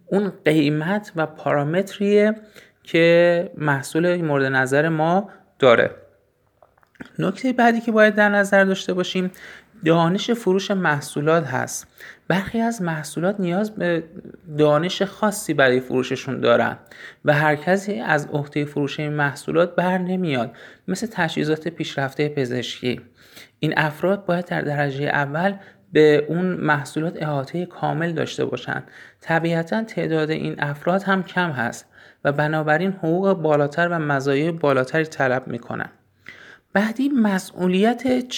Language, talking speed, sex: Persian, 120 wpm, male